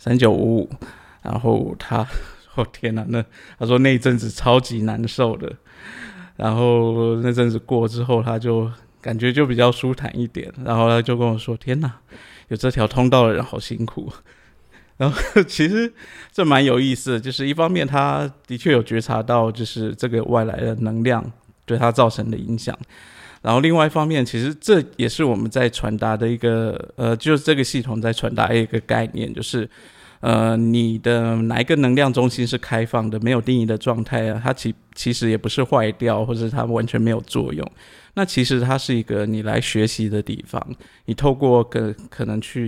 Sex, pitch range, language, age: male, 115-130 Hz, Chinese, 20-39